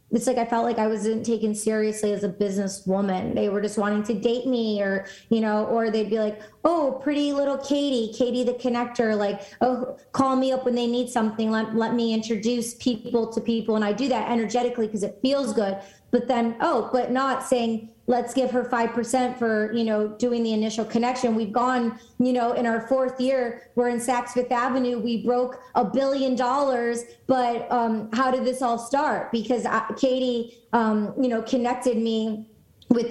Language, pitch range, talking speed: English, 220-250 Hz, 200 wpm